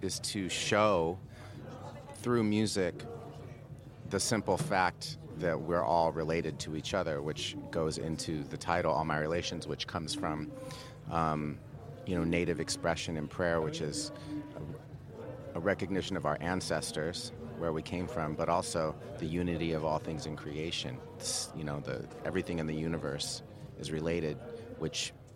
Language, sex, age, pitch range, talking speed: French, male, 30-49, 80-100 Hz, 150 wpm